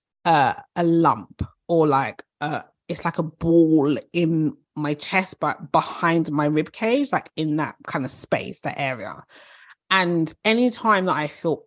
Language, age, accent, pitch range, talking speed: English, 20-39, British, 150-195 Hz, 160 wpm